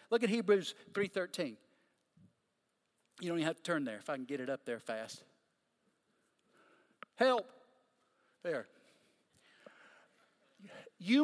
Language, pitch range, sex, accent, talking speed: English, 165-245 Hz, male, American, 115 wpm